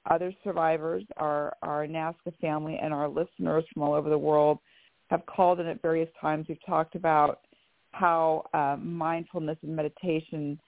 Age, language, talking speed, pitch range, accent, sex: 40-59, English, 155 wpm, 155-210 Hz, American, female